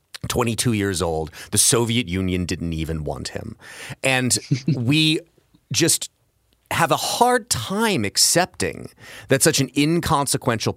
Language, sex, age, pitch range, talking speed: English, male, 30-49, 95-125 Hz, 125 wpm